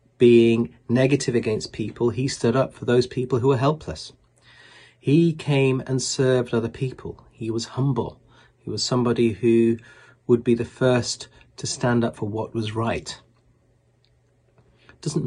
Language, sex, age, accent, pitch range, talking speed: English, male, 30-49, British, 110-125 Hz, 150 wpm